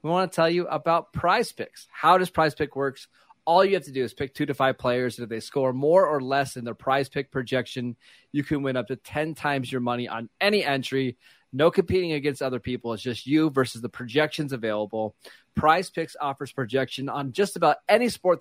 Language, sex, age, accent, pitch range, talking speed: English, male, 30-49, American, 125-155 Hz, 225 wpm